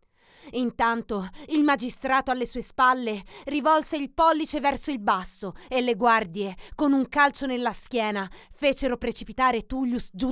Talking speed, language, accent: 140 wpm, Italian, native